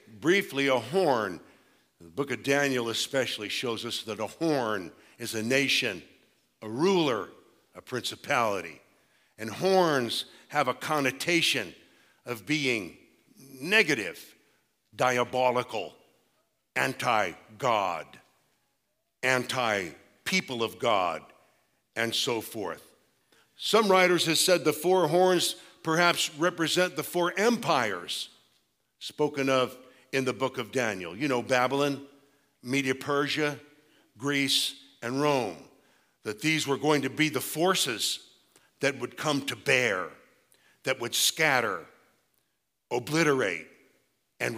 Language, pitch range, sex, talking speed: English, 125-155 Hz, male, 110 wpm